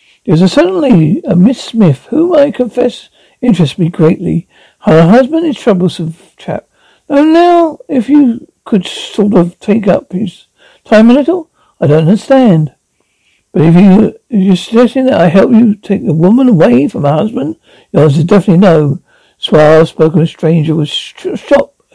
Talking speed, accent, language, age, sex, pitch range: 175 wpm, British, English, 60-79, male, 165-245 Hz